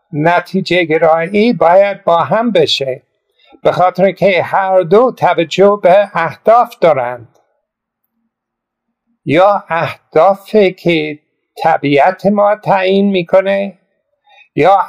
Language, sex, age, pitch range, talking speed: Persian, male, 60-79, 150-195 Hz, 95 wpm